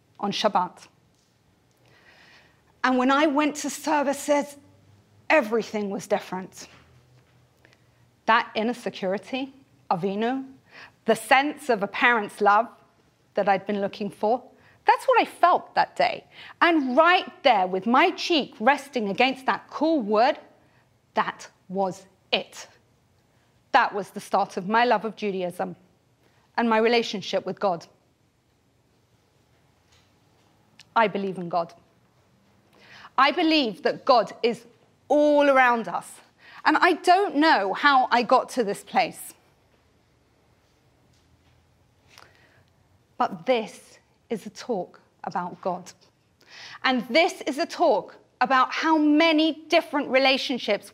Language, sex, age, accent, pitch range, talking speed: English, female, 40-59, British, 195-290 Hz, 115 wpm